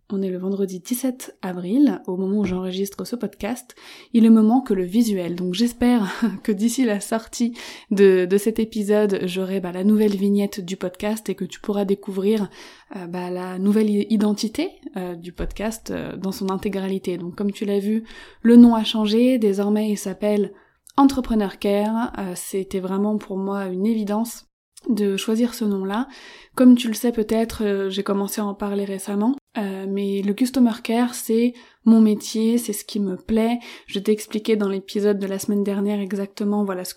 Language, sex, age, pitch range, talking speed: French, female, 20-39, 195-230 Hz, 185 wpm